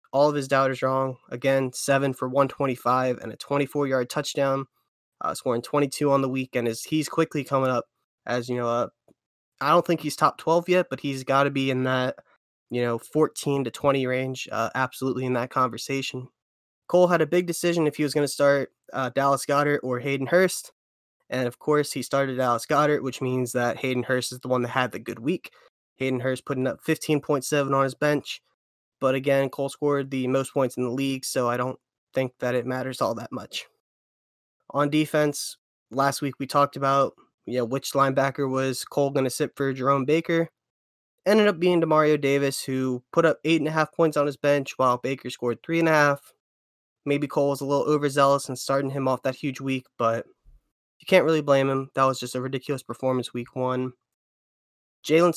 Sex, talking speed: male, 195 wpm